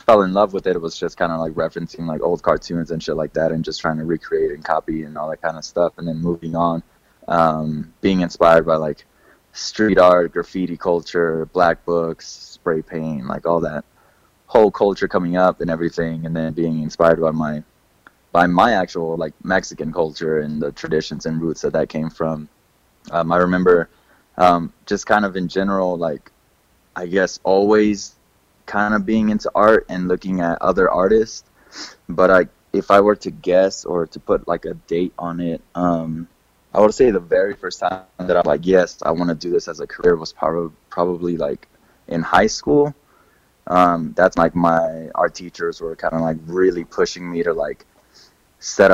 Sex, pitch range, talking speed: male, 80-90 Hz, 195 wpm